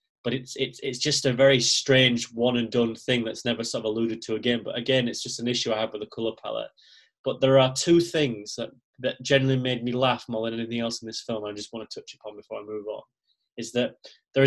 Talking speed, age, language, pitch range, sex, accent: 255 wpm, 20-39, English, 120-145 Hz, male, British